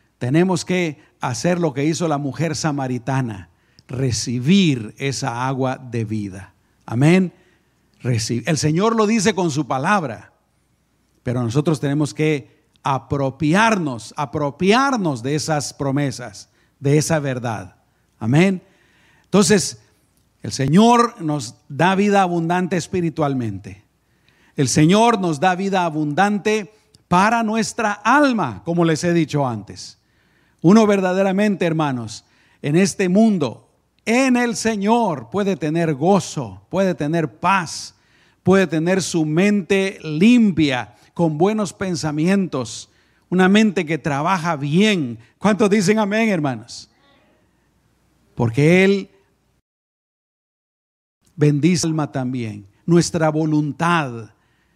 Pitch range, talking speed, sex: 130-190 Hz, 105 wpm, male